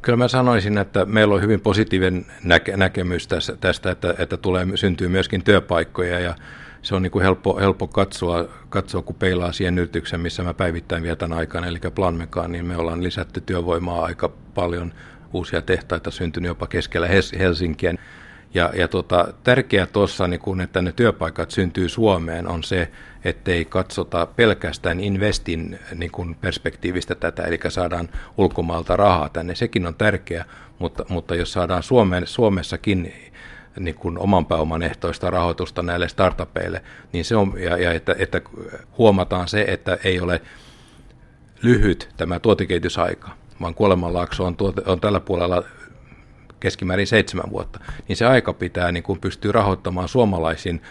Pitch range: 85-100 Hz